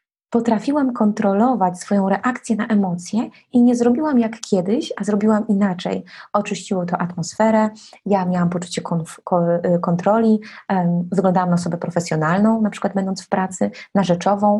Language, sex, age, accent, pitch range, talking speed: Polish, female, 20-39, native, 180-220 Hz, 145 wpm